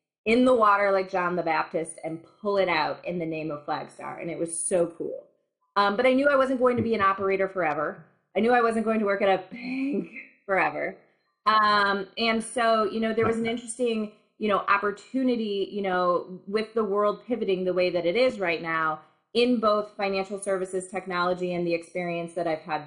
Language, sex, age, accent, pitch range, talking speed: English, female, 20-39, American, 180-225 Hz, 210 wpm